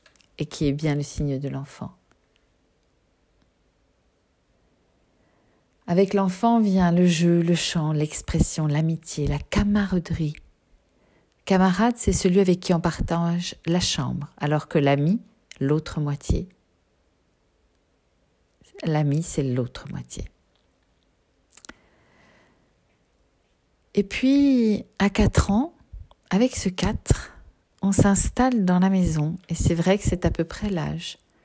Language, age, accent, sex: French, 40-59, French, female